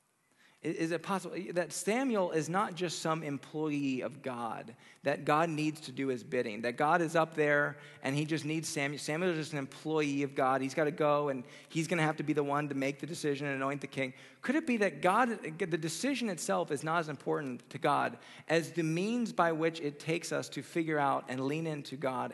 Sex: male